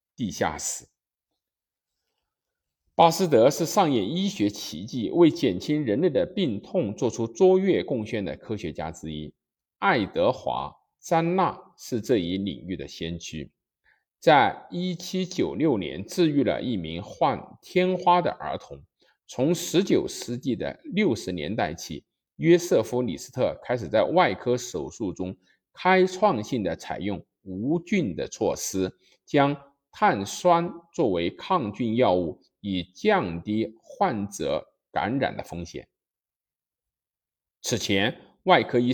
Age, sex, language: 50-69, male, Chinese